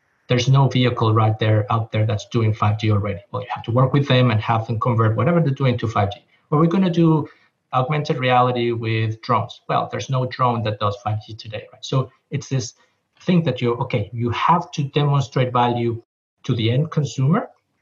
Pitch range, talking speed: 115-140 Hz, 205 wpm